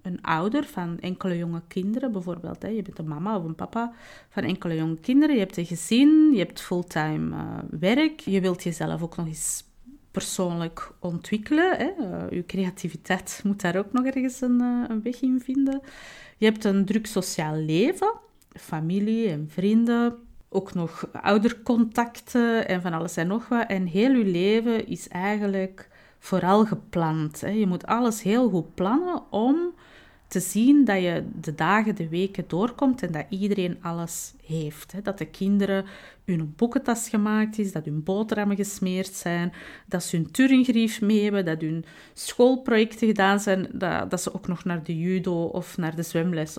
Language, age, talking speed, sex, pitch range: Dutch, 30-49, 160 wpm, female, 175-235 Hz